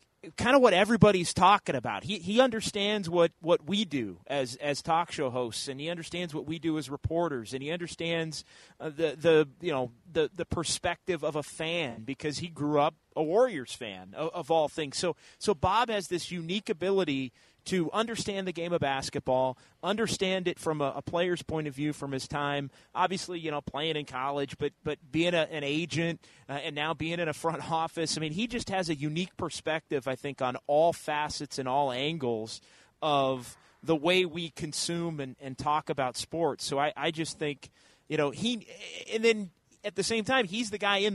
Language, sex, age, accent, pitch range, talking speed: English, male, 30-49, American, 140-175 Hz, 205 wpm